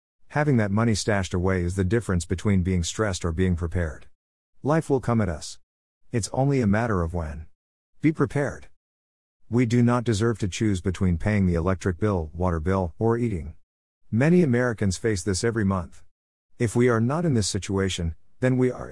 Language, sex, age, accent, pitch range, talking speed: English, male, 50-69, American, 85-120 Hz, 185 wpm